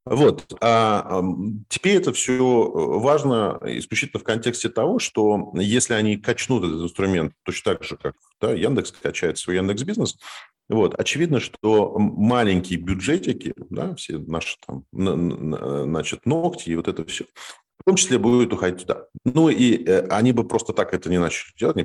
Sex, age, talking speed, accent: male, 40-59, 160 wpm, native